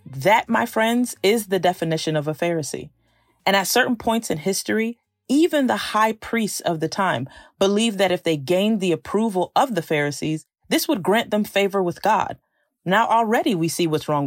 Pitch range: 170-230 Hz